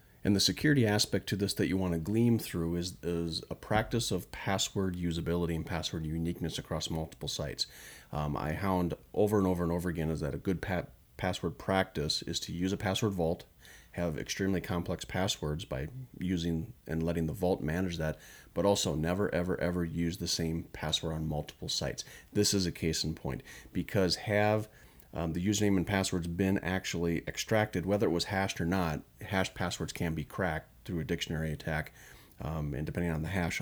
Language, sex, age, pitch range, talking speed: English, male, 30-49, 80-100 Hz, 190 wpm